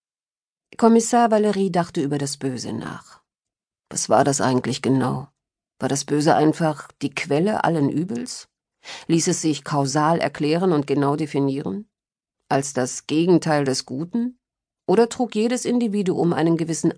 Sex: female